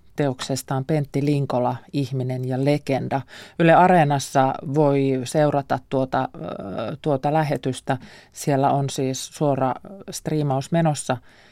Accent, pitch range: native, 130-175 Hz